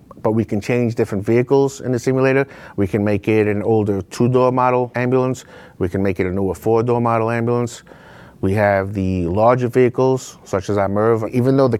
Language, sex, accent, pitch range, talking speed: English, male, American, 100-120 Hz, 200 wpm